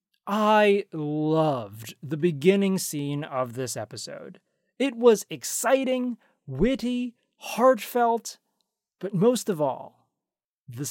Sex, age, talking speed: male, 30-49, 100 wpm